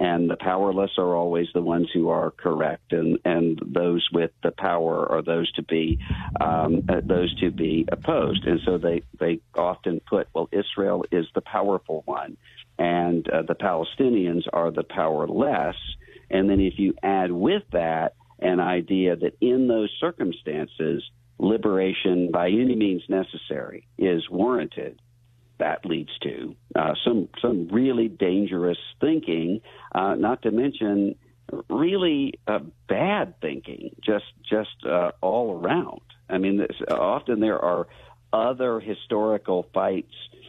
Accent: American